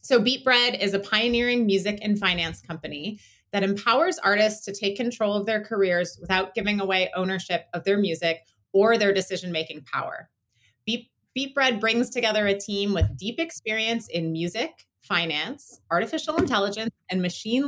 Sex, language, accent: female, English, American